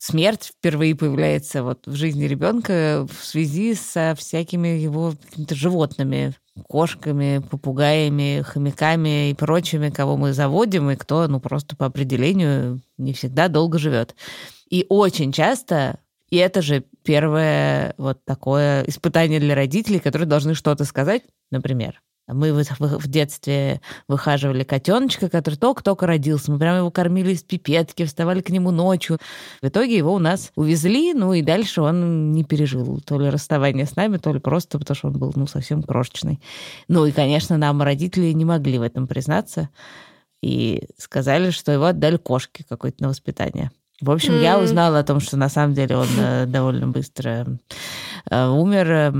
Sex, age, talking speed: female, 20-39, 155 wpm